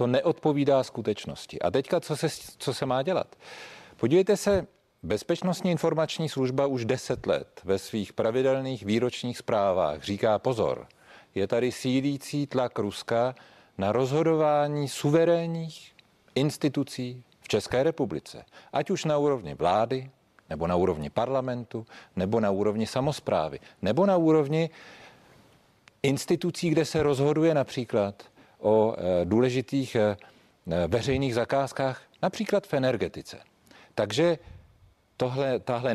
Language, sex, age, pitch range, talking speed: Czech, male, 40-59, 120-160 Hz, 115 wpm